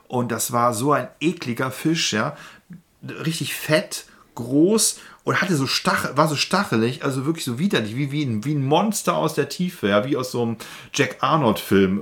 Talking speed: 185 wpm